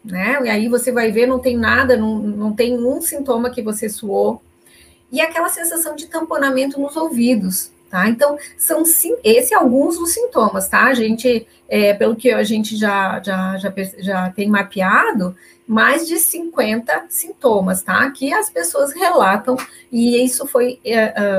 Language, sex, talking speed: Portuguese, female, 165 wpm